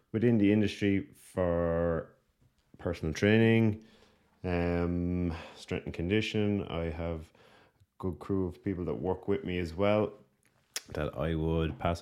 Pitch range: 80-95 Hz